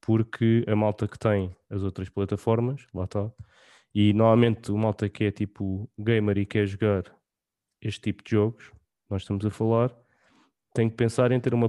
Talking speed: 180 wpm